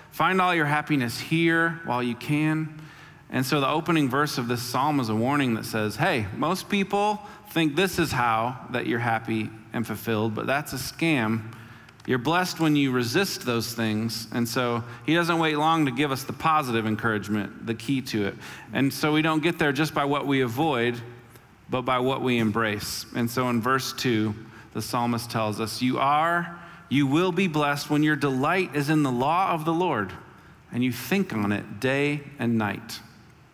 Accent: American